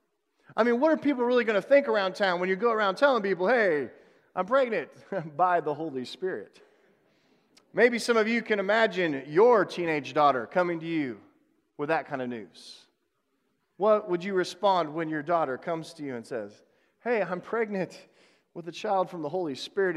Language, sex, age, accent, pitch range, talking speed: English, male, 40-59, American, 155-215 Hz, 190 wpm